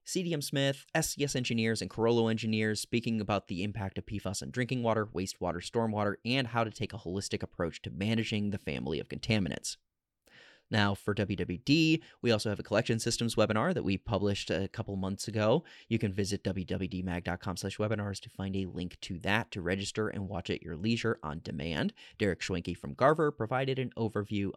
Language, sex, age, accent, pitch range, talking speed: English, male, 30-49, American, 95-115 Hz, 185 wpm